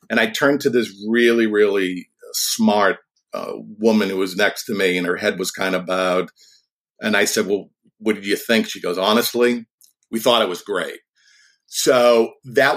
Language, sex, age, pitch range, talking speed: English, male, 50-69, 115-155 Hz, 190 wpm